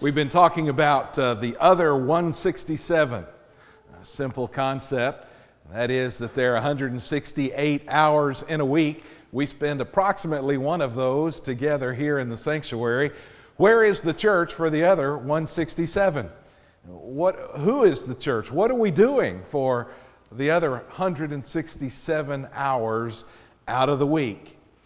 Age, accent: 50-69, American